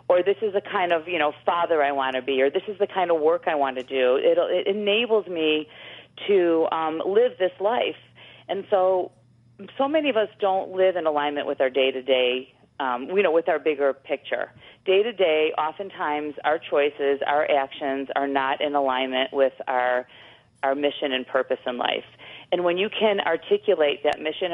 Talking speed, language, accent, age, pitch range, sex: 200 wpm, English, American, 40-59, 140-180 Hz, female